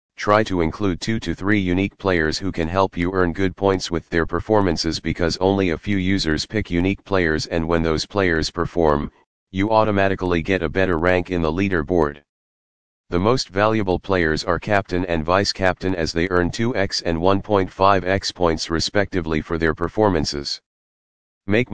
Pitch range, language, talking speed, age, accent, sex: 85-100 Hz, English, 165 wpm, 40-59, American, male